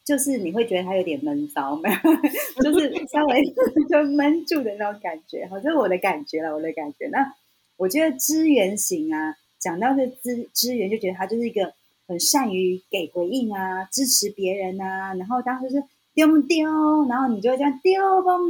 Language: Chinese